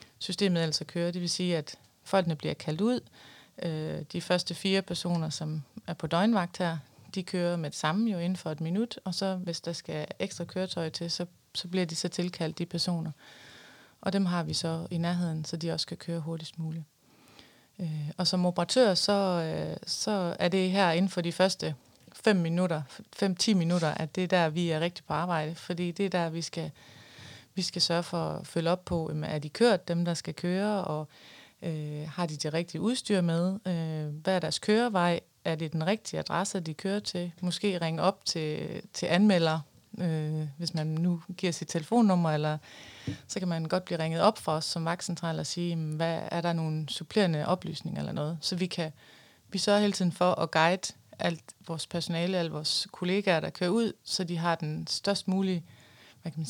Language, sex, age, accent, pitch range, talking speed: Danish, female, 20-39, native, 160-185 Hz, 205 wpm